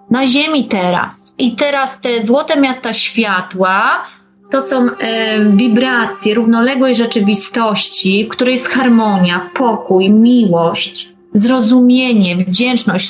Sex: female